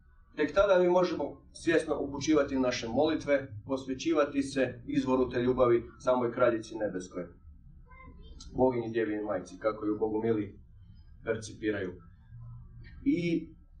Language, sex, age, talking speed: Croatian, male, 40-59, 110 wpm